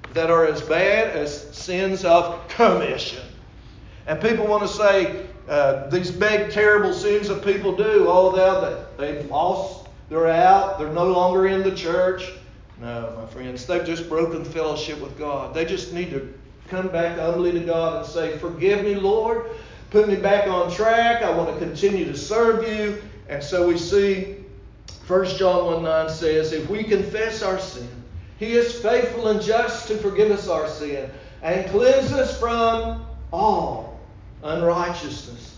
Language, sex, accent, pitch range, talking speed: English, male, American, 160-225 Hz, 165 wpm